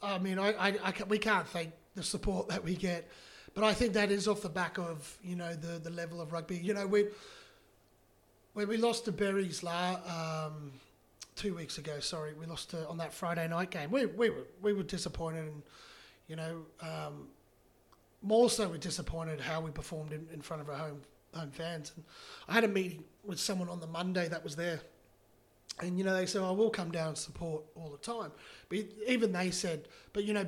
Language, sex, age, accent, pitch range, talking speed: English, male, 30-49, Australian, 160-200 Hz, 220 wpm